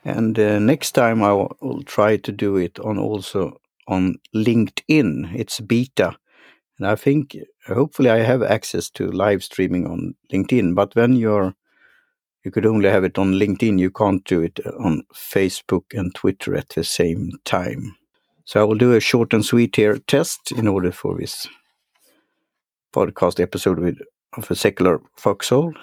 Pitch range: 95-120 Hz